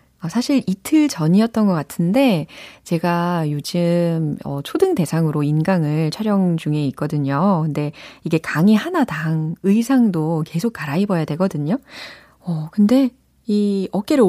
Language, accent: Korean, native